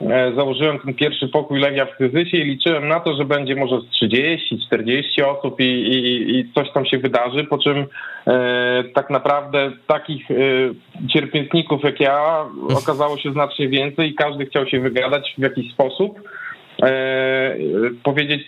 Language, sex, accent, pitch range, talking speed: Polish, male, native, 125-145 Hz, 155 wpm